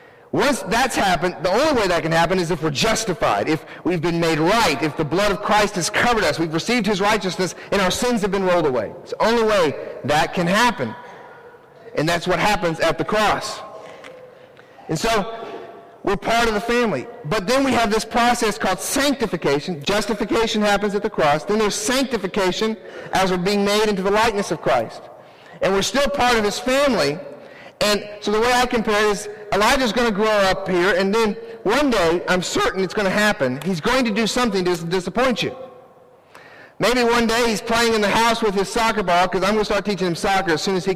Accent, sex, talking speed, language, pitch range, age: American, male, 215 wpm, English, 190-235 Hz, 40-59